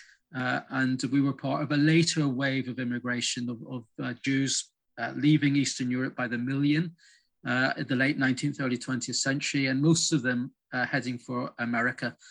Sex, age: male, 40-59